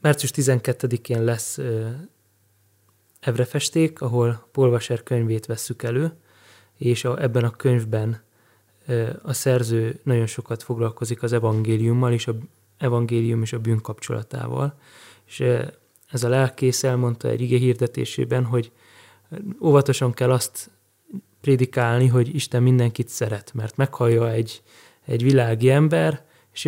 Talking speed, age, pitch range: 115 wpm, 20-39, 115-135 Hz